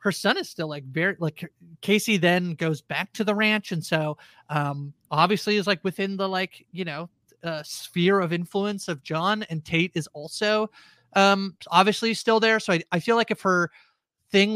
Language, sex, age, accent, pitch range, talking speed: English, male, 30-49, American, 165-210 Hz, 195 wpm